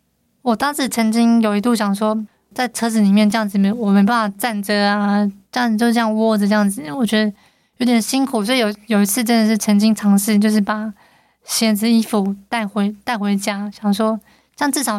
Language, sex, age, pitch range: Chinese, female, 20-39, 205-235 Hz